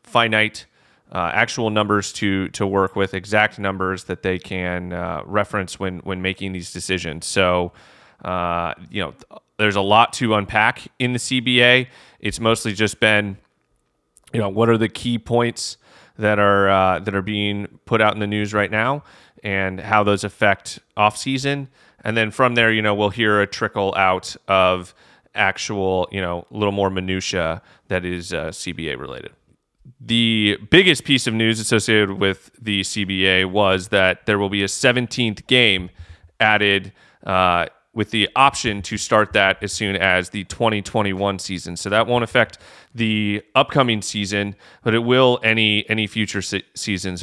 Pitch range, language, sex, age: 95-115 Hz, English, male, 30-49